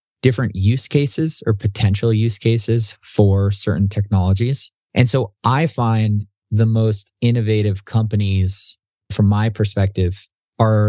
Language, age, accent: English, 20-39, American